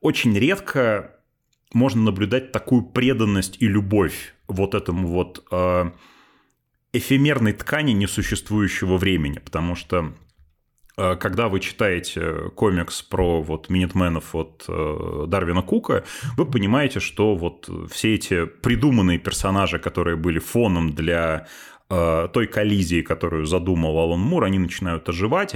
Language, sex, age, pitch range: Russian, male, 30-49, 85-110 Hz